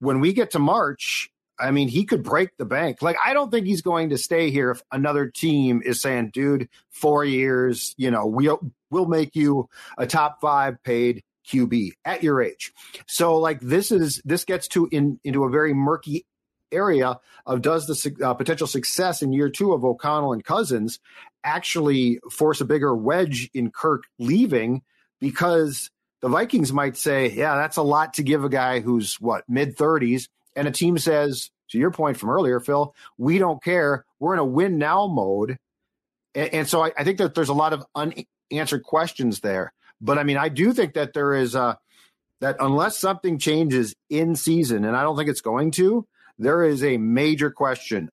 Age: 40-59